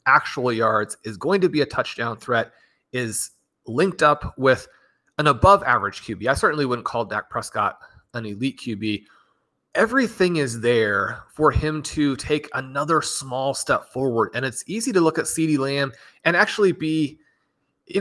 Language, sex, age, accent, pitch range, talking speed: English, male, 30-49, American, 120-150 Hz, 165 wpm